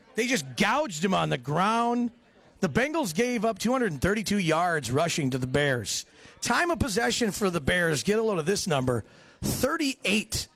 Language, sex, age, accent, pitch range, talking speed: English, male, 40-59, American, 160-225 Hz, 170 wpm